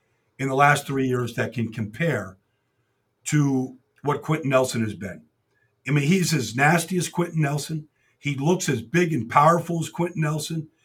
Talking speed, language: 170 wpm, English